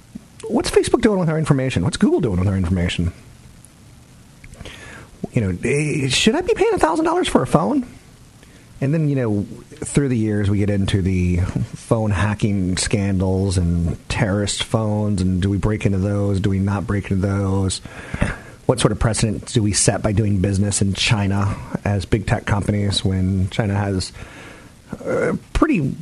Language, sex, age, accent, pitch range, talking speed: English, male, 30-49, American, 95-130 Hz, 165 wpm